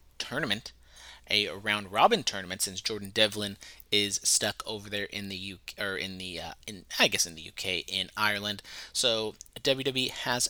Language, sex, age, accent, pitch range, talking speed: English, male, 30-49, American, 100-145 Hz, 165 wpm